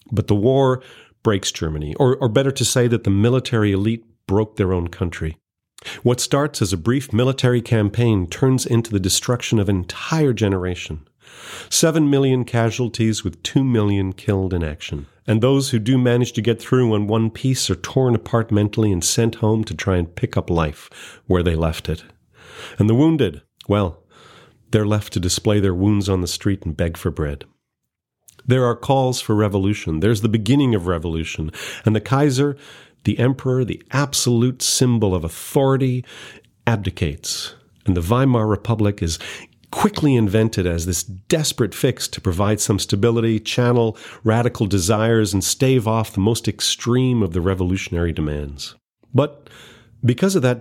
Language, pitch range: English, 95-125 Hz